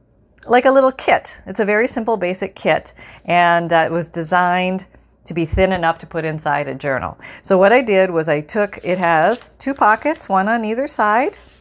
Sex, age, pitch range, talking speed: female, 40-59, 160-210 Hz, 200 wpm